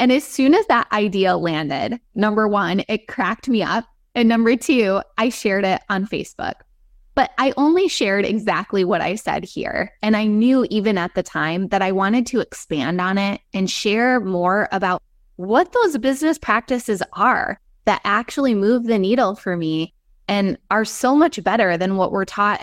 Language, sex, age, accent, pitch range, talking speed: English, female, 20-39, American, 180-230 Hz, 185 wpm